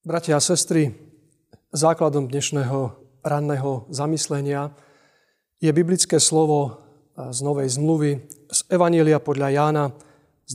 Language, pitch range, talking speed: Slovak, 135-170 Hz, 100 wpm